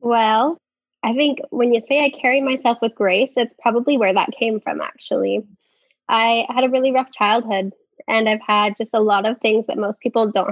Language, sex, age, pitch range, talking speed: English, female, 10-29, 205-260 Hz, 205 wpm